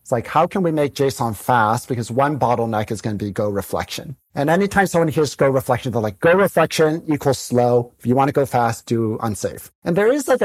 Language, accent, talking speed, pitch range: English, American, 235 wpm, 115-150 Hz